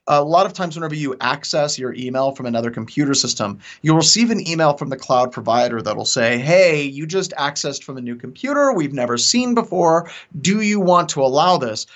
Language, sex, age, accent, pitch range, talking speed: English, male, 30-49, American, 130-185 Hz, 205 wpm